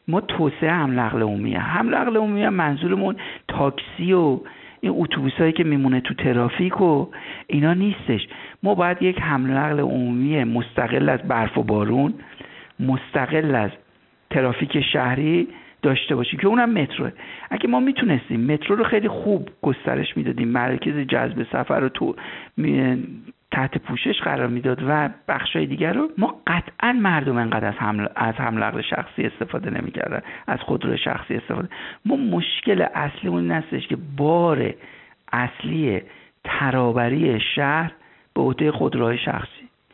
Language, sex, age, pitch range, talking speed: Persian, male, 50-69, 130-215 Hz, 135 wpm